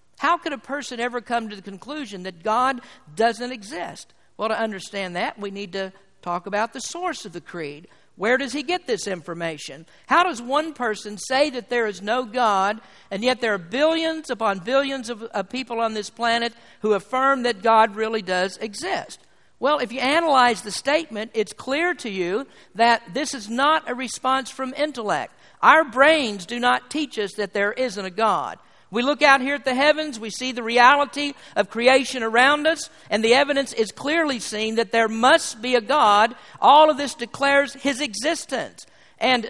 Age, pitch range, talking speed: 50-69, 220-285 Hz, 190 wpm